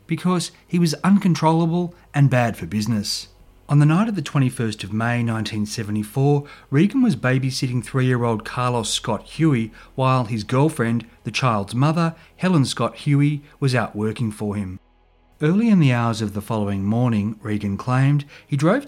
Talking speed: 160 wpm